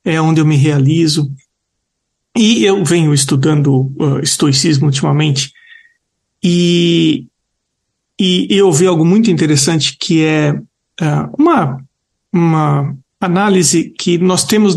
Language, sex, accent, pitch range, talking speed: Portuguese, male, Brazilian, 160-205 Hz, 115 wpm